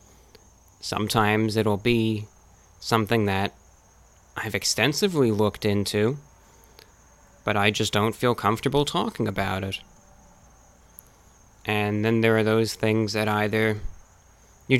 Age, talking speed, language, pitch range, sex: 20-39, 110 wpm, English, 100-115 Hz, male